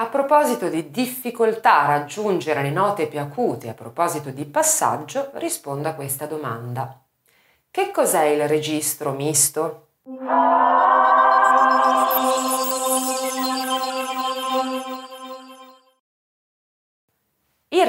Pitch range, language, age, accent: 130-205 Hz, Italian, 30-49, native